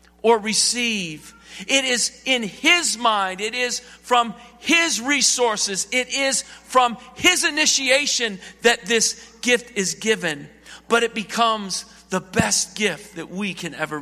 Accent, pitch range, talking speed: American, 185-240 Hz, 135 wpm